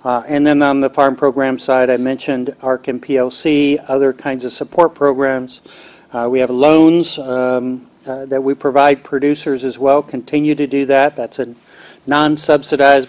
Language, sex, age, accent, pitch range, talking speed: English, male, 40-59, American, 125-145 Hz, 170 wpm